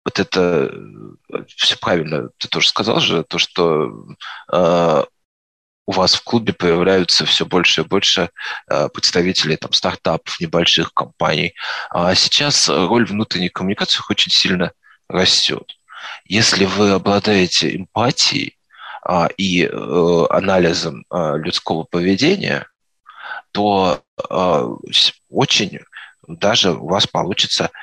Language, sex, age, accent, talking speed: Russian, male, 20-39, native, 95 wpm